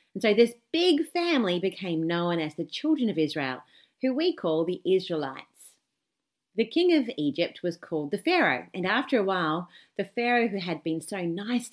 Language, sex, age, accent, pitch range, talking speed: English, female, 30-49, Australian, 165-240 Hz, 185 wpm